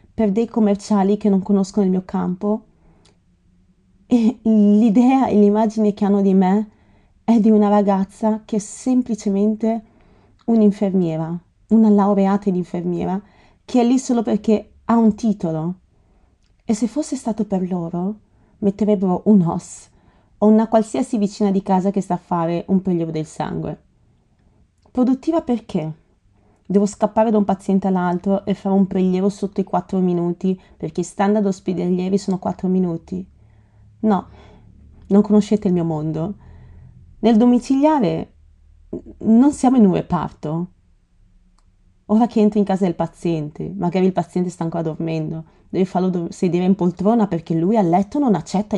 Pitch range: 170-215 Hz